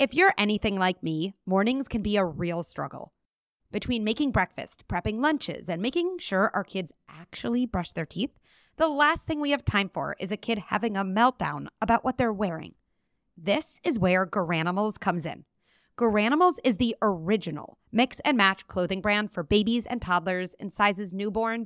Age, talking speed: 30-49, 170 wpm